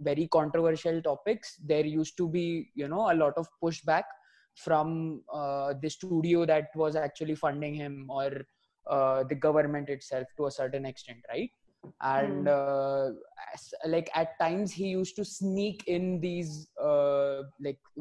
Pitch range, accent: 150-185 Hz, Indian